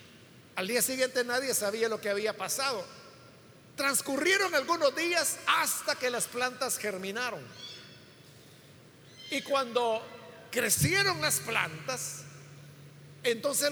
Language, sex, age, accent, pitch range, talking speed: Spanish, male, 50-69, Mexican, 205-275 Hz, 100 wpm